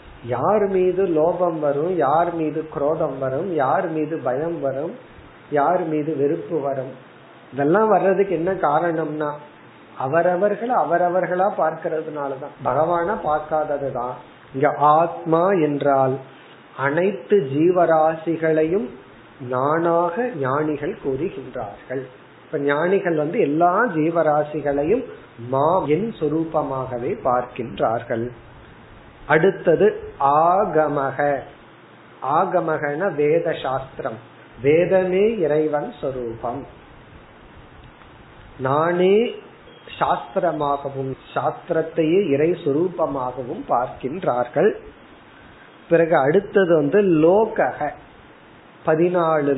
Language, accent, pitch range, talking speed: Tamil, native, 135-170 Hz, 60 wpm